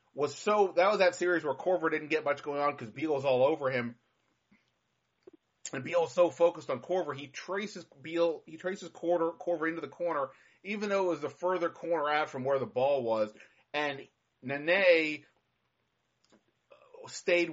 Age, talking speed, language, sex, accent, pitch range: 30-49, 170 wpm, English, male, American, 125-170 Hz